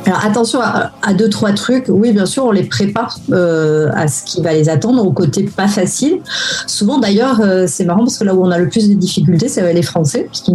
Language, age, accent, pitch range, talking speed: French, 40-59, French, 155-205 Hz, 245 wpm